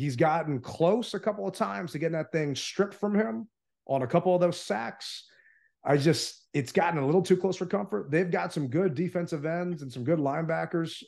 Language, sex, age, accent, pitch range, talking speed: English, male, 30-49, American, 140-185 Hz, 215 wpm